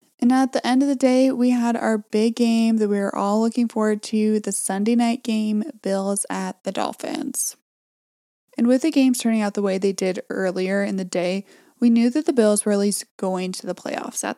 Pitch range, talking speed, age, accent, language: 200-245 Hz, 225 wpm, 20-39, American, English